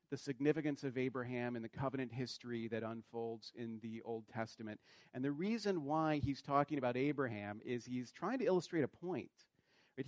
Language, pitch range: English, 125-155 Hz